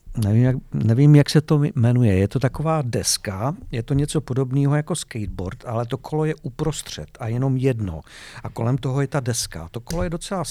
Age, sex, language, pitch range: 50-69, male, Czech, 105-140 Hz